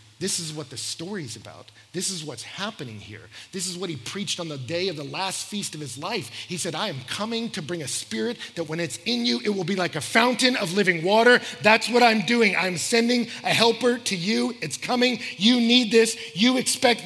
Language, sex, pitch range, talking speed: English, male, 140-225 Hz, 230 wpm